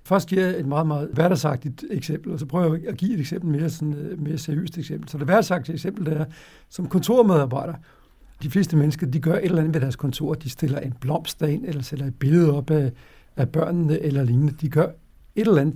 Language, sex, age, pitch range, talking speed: Danish, male, 60-79, 140-170 Hz, 235 wpm